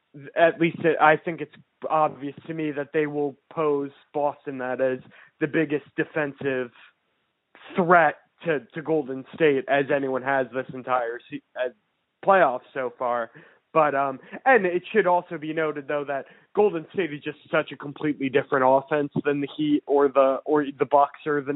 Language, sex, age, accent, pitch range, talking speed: English, male, 20-39, American, 135-160 Hz, 170 wpm